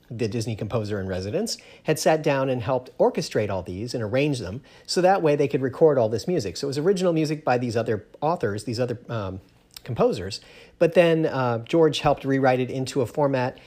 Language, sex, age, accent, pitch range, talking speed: English, male, 40-59, American, 110-145 Hz, 210 wpm